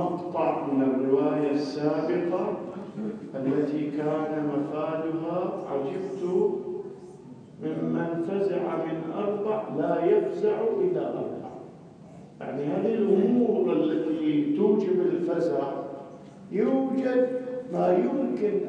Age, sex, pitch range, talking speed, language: 50-69, male, 165-240 Hz, 80 wpm, Arabic